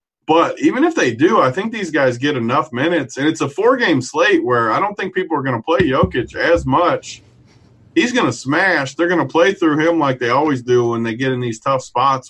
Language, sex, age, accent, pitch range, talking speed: English, male, 20-39, American, 125-185 Hz, 245 wpm